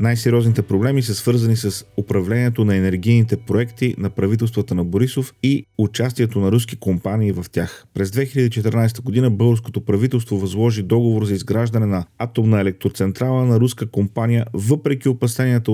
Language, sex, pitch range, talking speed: Bulgarian, male, 100-120 Hz, 140 wpm